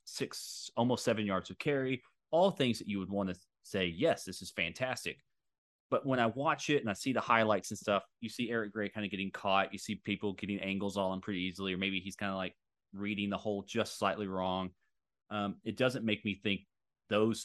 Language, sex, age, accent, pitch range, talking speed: English, male, 30-49, American, 95-115 Hz, 225 wpm